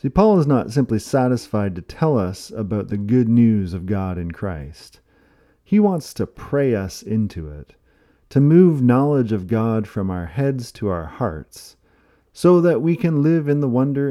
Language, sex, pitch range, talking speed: English, male, 100-135 Hz, 185 wpm